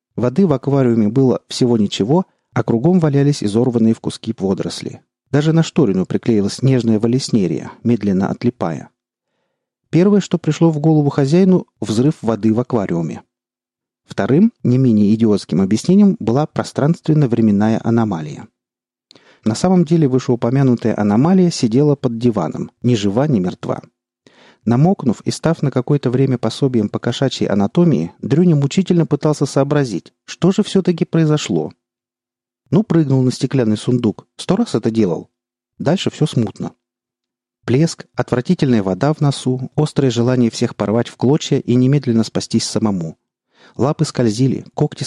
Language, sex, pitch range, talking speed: Russian, male, 115-150 Hz, 130 wpm